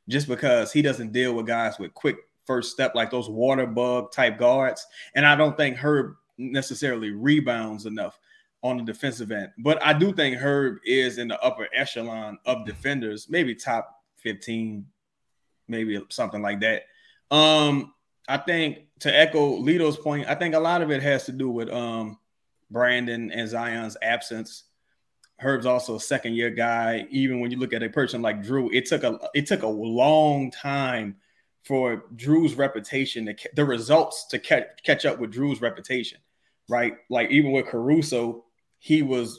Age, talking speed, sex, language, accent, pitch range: 20-39, 170 wpm, male, English, American, 115-140 Hz